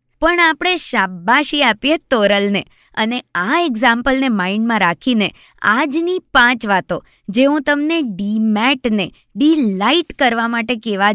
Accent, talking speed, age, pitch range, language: native, 115 wpm, 20-39, 205-280 Hz, Gujarati